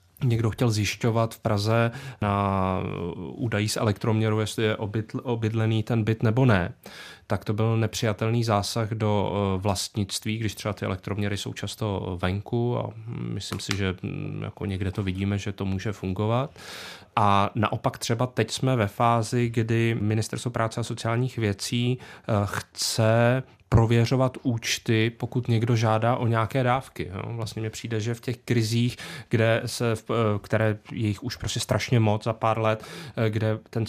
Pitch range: 105-120 Hz